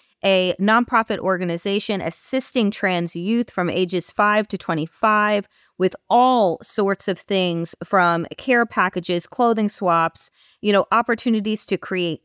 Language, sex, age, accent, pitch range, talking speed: English, female, 30-49, American, 170-215 Hz, 125 wpm